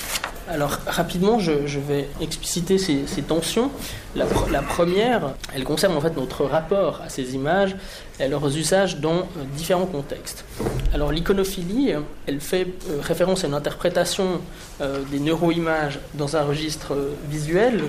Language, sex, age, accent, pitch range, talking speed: French, male, 20-39, French, 145-185 Hz, 130 wpm